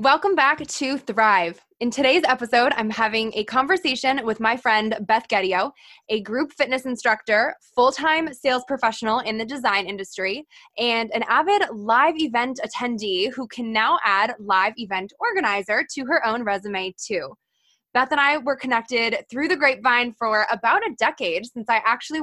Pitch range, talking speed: 210-265 Hz, 160 wpm